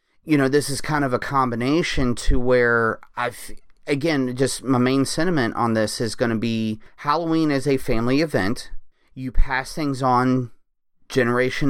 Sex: male